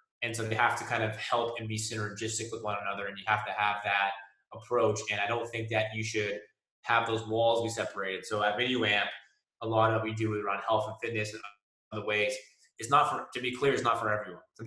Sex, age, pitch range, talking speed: male, 20-39, 110-125 Hz, 250 wpm